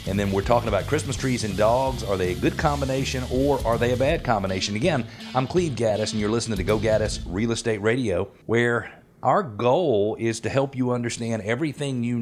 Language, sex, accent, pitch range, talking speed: English, male, American, 95-120 Hz, 210 wpm